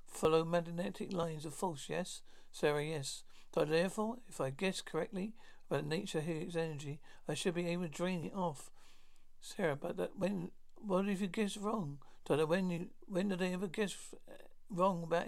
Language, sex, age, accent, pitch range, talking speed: English, male, 60-79, British, 150-180 Hz, 175 wpm